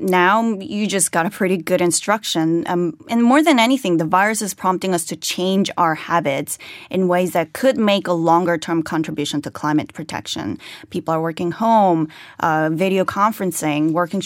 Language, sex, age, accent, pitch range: Korean, female, 10-29, American, 165-205 Hz